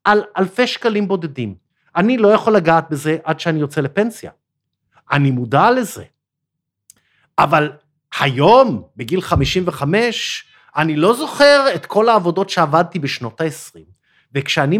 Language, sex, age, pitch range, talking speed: Hebrew, male, 50-69, 140-205 Hz, 120 wpm